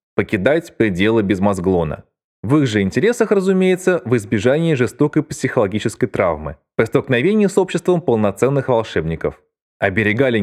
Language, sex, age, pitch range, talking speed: Russian, male, 20-39, 110-175 Hz, 120 wpm